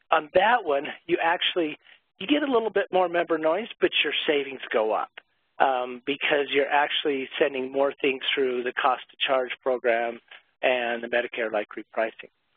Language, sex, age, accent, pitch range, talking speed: English, male, 50-69, American, 140-180 Hz, 160 wpm